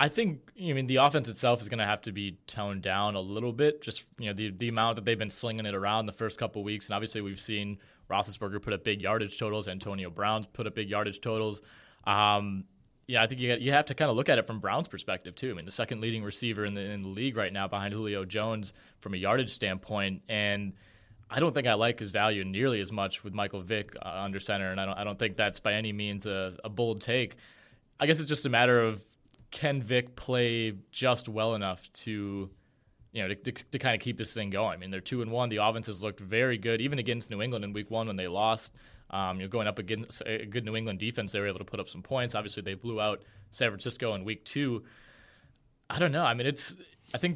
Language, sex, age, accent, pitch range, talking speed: English, male, 20-39, American, 100-120 Hz, 255 wpm